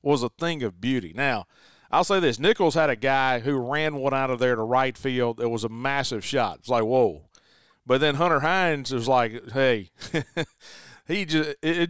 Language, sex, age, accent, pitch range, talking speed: English, male, 40-59, American, 120-145 Hz, 195 wpm